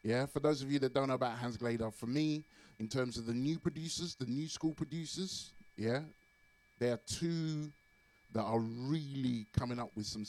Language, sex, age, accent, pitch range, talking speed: English, male, 20-39, British, 105-125 Hz, 200 wpm